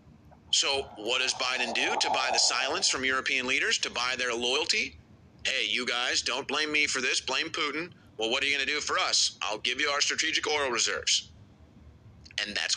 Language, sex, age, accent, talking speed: English, male, 40-59, American, 205 wpm